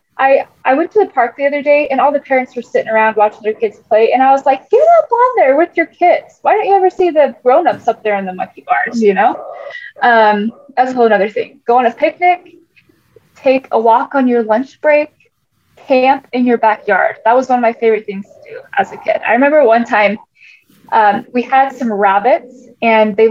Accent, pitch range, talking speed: American, 220-275 Hz, 230 wpm